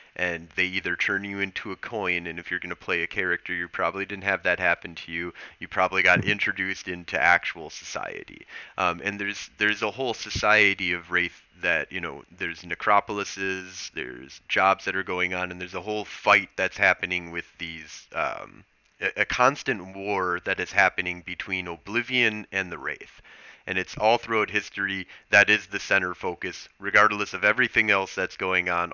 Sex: male